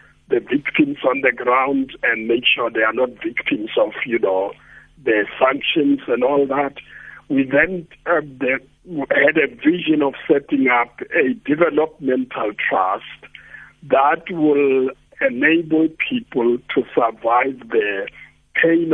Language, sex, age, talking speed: English, male, 60-79, 125 wpm